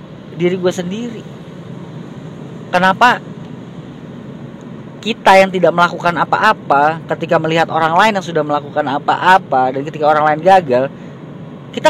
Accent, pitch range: Indonesian, 145-195 Hz